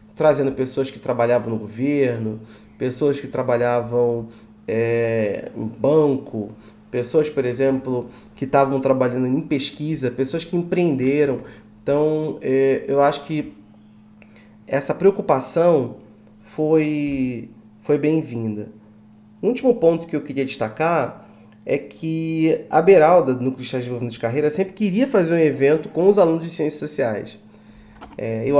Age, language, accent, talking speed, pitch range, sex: 20-39, Portuguese, Brazilian, 130 wpm, 120-170 Hz, male